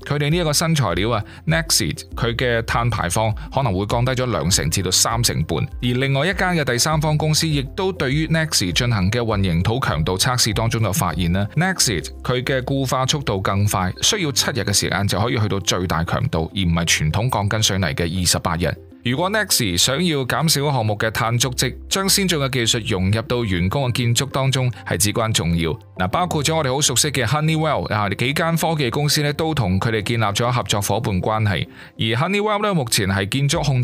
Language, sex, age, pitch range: Chinese, male, 20-39, 100-145 Hz